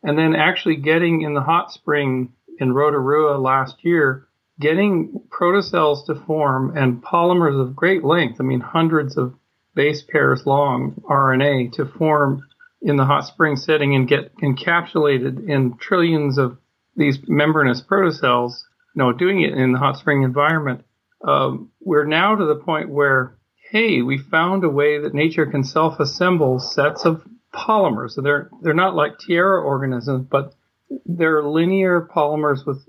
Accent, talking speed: American, 155 wpm